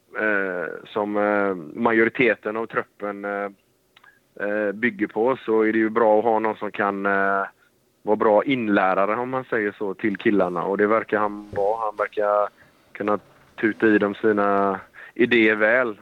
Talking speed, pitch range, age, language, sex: 165 wpm, 105-125 Hz, 30-49, Swedish, male